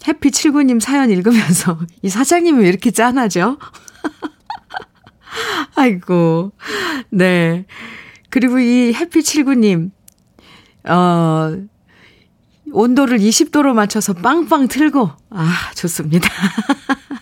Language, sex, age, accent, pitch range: Korean, female, 40-59, native, 175-265 Hz